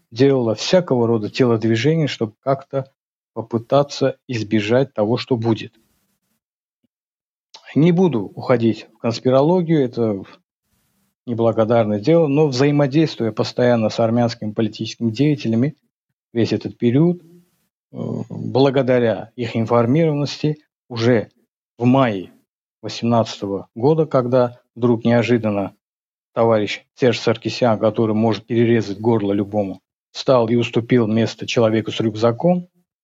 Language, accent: Russian, native